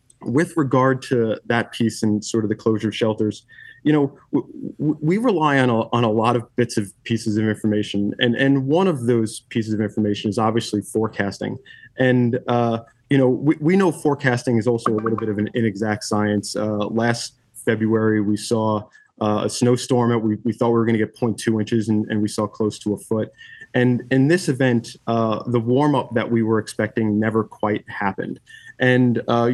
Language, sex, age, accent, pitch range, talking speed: English, male, 20-39, American, 110-130 Hz, 205 wpm